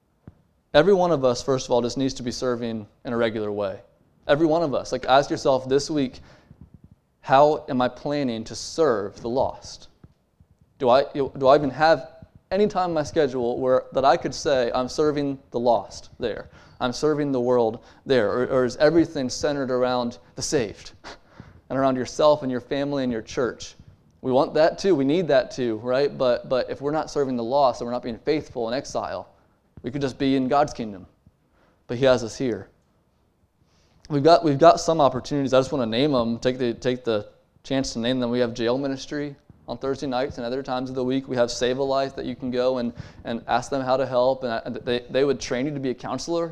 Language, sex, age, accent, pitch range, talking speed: English, male, 20-39, American, 120-140 Hz, 220 wpm